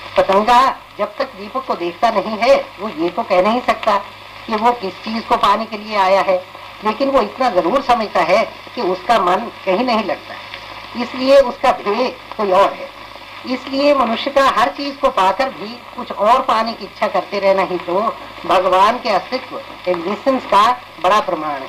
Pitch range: 185-240 Hz